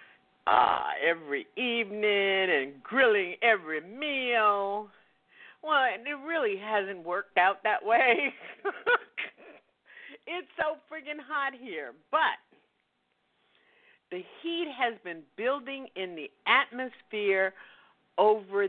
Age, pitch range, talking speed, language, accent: 50-69, 170-245 Hz, 95 wpm, English, American